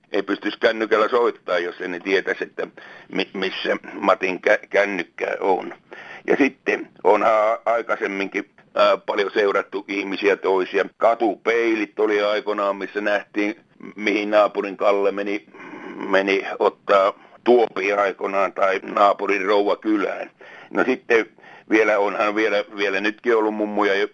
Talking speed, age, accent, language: 115 wpm, 60-79, native, Finnish